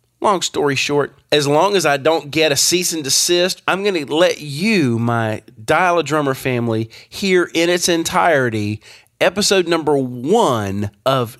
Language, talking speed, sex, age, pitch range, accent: English, 155 wpm, male, 40-59, 120-170 Hz, American